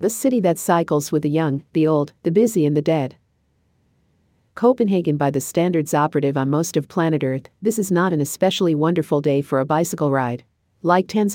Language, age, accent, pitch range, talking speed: English, 50-69, American, 145-170 Hz, 195 wpm